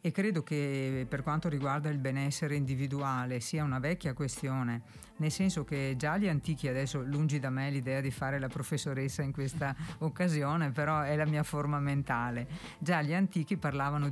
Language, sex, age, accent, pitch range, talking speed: Italian, female, 50-69, native, 135-160 Hz, 175 wpm